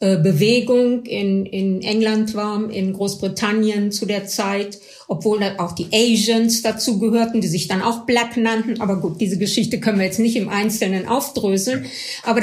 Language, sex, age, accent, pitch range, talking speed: German, female, 50-69, German, 200-235 Hz, 165 wpm